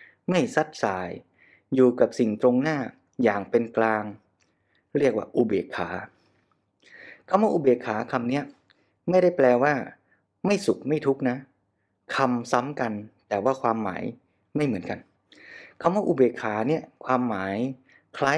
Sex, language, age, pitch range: male, Thai, 20-39, 110-135 Hz